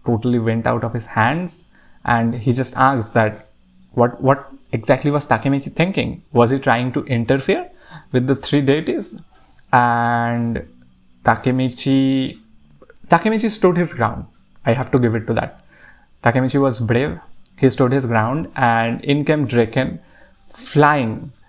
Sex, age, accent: male, 20-39, Indian